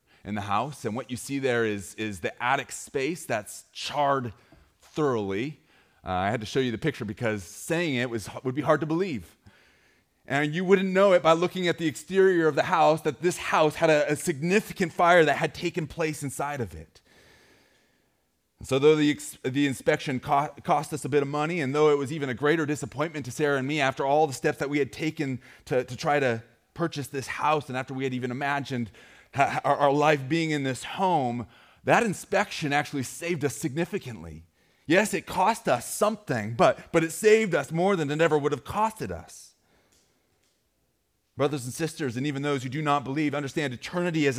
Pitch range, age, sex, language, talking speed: 125-165 Hz, 30-49, male, English, 205 wpm